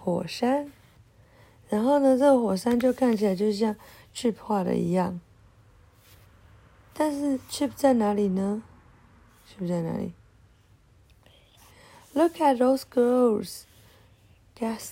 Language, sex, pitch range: Chinese, female, 180-250 Hz